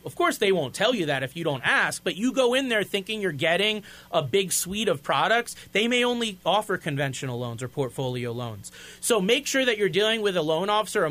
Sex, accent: male, American